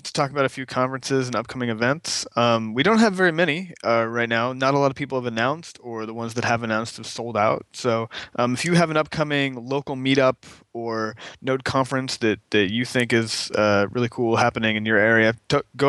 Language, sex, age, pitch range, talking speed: English, male, 20-39, 110-140 Hz, 225 wpm